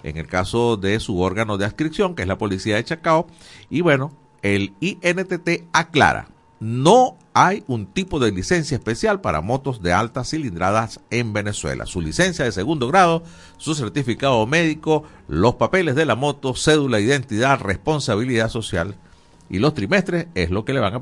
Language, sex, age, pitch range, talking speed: Spanish, male, 50-69, 105-150 Hz, 170 wpm